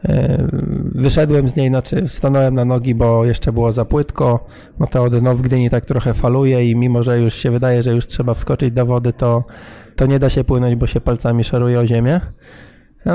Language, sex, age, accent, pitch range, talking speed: Polish, male, 20-39, native, 120-140 Hz, 205 wpm